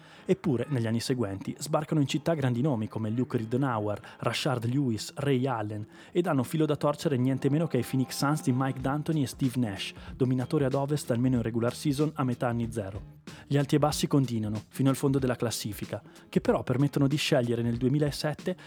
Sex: male